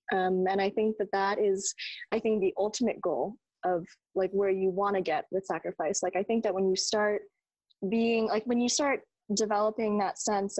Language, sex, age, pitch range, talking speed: English, female, 20-39, 195-220 Hz, 205 wpm